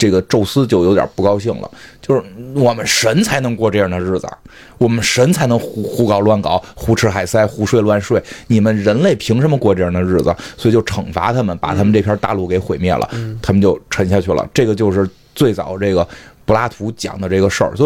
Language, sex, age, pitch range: Chinese, male, 30-49, 100-130 Hz